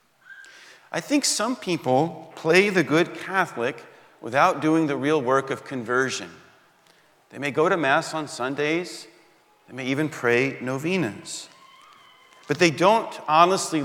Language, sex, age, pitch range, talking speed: English, male, 40-59, 115-155 Hz, 135 wpm